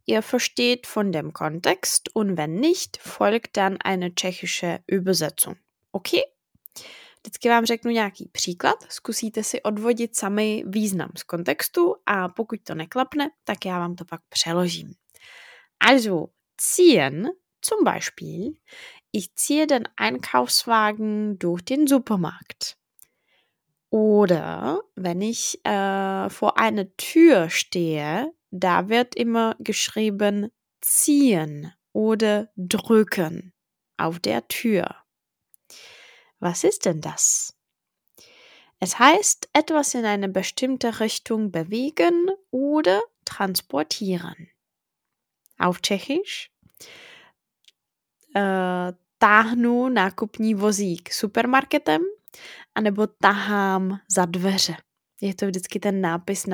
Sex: female